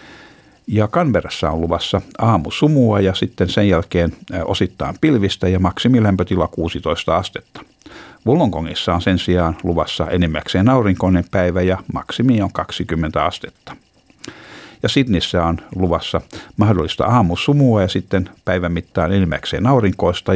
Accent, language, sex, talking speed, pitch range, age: native, Finnish, male, 110 wpm, 85-105 Hz, 60-79